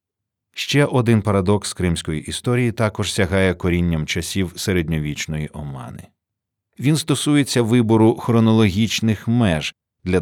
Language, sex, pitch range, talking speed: Ukrainian, male, 85-115 Hz, 100 wpm